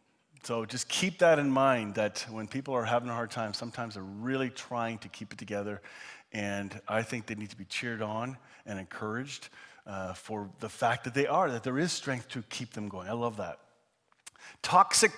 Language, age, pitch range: English, 40-59, 115-165 Hz